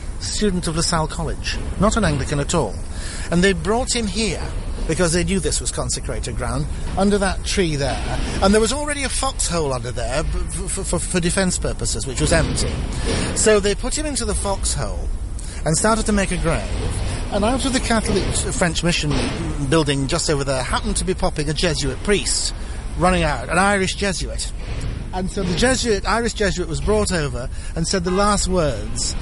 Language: English